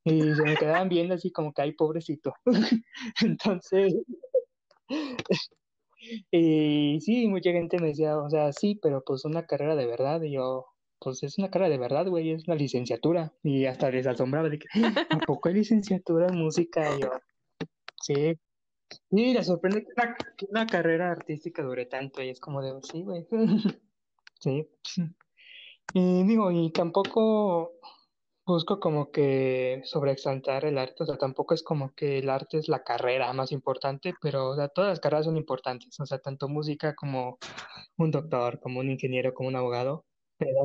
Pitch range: 135-175 Hz